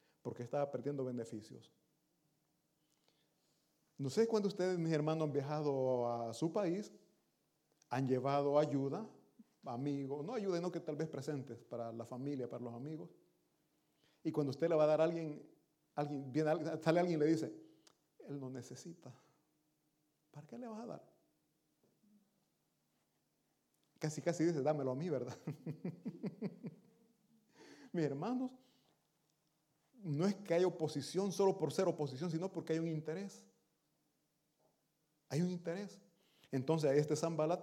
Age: 40-59